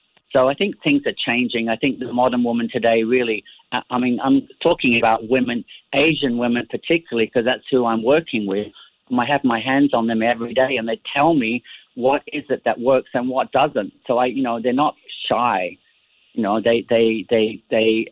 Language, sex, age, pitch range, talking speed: English, male, 50-69, 115-140 Hz, 200 wpm